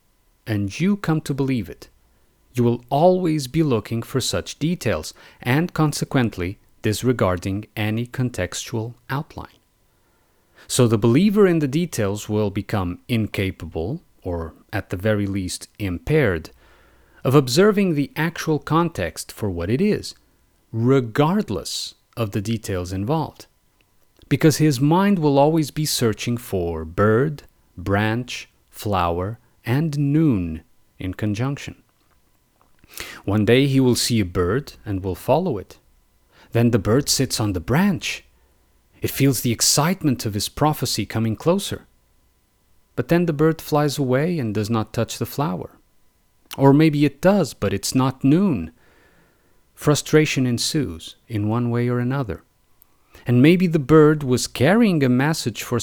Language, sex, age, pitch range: English, male, 40-59, 105-150 Hz